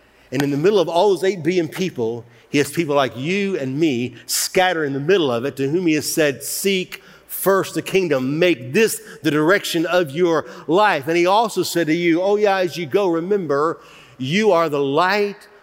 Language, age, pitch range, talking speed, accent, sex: English, 50-69, 140-170 Hz, 210 wpm, American, male